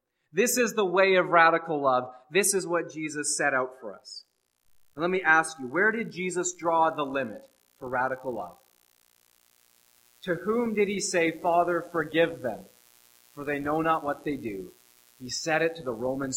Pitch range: 125-175 Hz